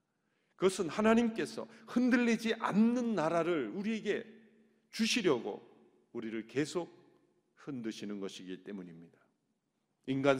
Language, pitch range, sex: Korean, 115-170 Hz, male